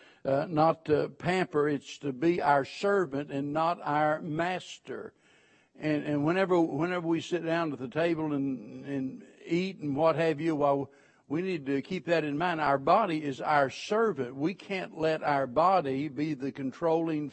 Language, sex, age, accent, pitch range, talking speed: English, male, 60-79, American, 145-175 Hz, 175 wpm